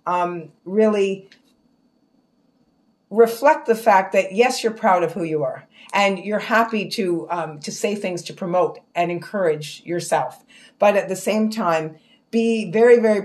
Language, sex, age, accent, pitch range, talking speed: English, female, 50-69, American, 165-210 Hz, 155 wpm